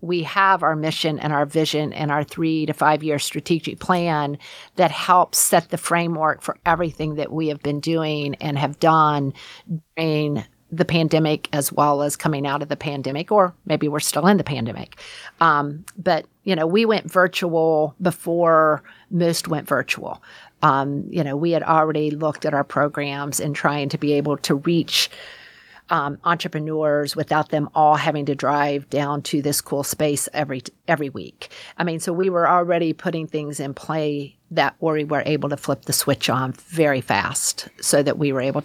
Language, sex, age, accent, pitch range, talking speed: English, female, 50-69, American, 145-165 Hz, 185 wpm